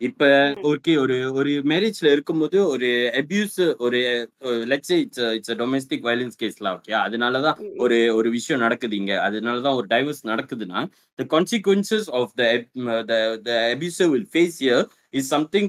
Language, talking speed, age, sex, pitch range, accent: Tamil, 110 wpm, 20-39, male, 120-180 Hz, native